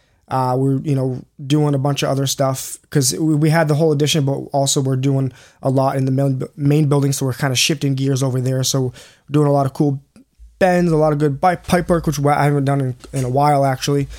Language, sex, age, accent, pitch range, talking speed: English, male, 20-39, American, 130-150 Hz, 240 wpm